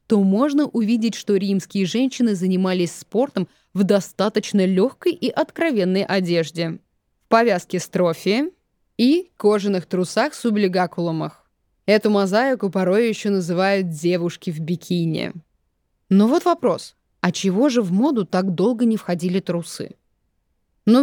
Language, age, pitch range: Russian, 20-39, 190-260 Hz